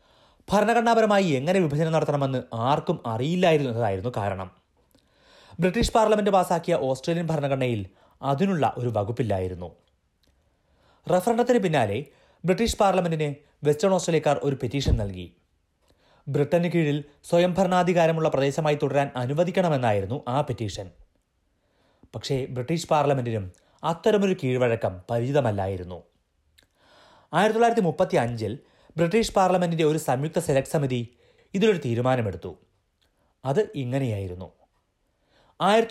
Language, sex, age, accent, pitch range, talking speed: Malayalam, male, 30-49, native, 105-170 Hz, 80 wpm